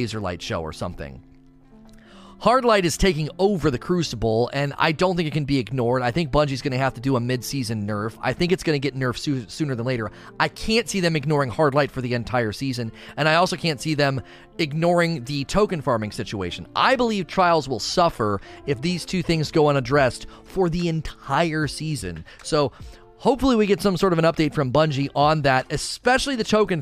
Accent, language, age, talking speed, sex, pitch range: American, English, 30-49, 205 wpm, male, 130-175 Hz